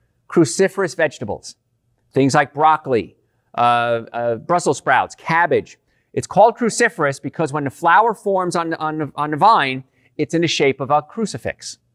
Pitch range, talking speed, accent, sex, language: 135-175 Hz, 150 wpm, American, male, English